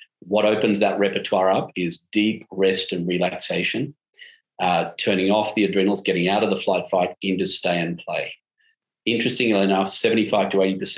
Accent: Australian